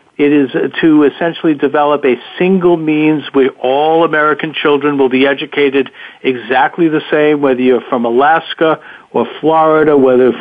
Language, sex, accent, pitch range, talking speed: English, male, American, 135-165 Hz, 150 wpm